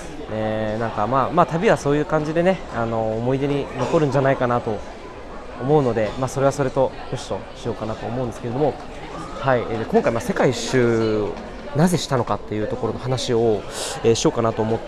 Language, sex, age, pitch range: Japanese, male, 20-39, 110-150 Hz